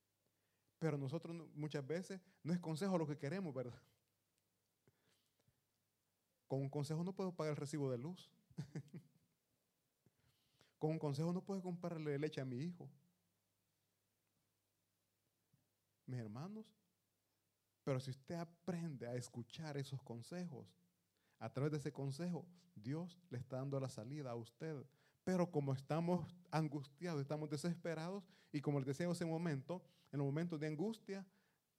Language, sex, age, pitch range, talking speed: Italian, male, 30-49, 120-165 Hz, 140 wpm